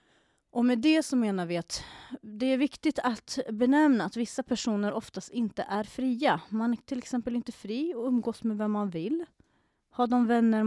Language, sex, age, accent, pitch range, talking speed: Swedish, female, 30-49, native, 185-235 Hz, 185 wpm